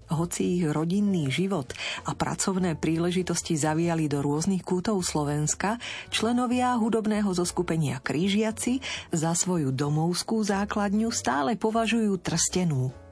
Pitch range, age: 150-205 Hz, 40-59